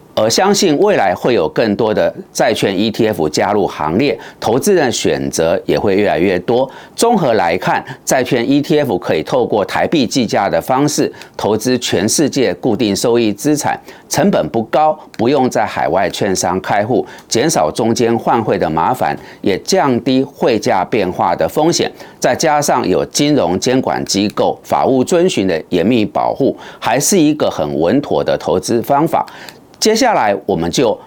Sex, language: male, Chinese